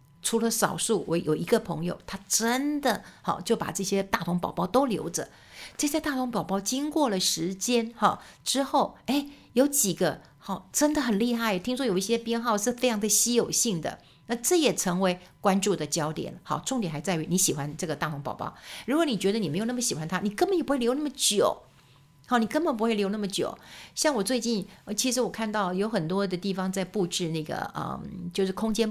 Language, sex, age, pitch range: Chinese, female, 60-79, 175-235 Hz